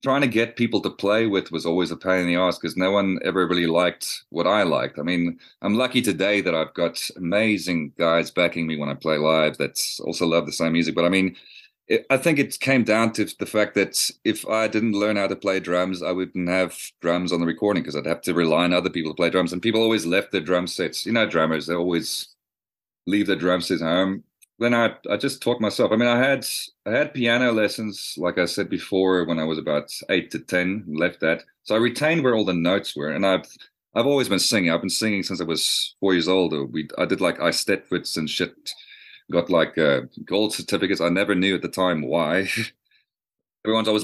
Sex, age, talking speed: male, 30-49, 235 wpm